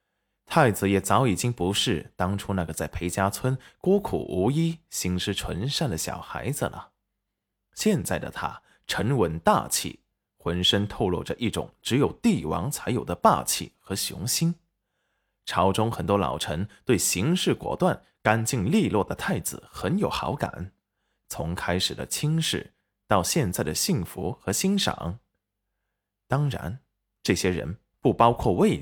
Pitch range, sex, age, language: 95-135 Hz, male, 20-39, Chinese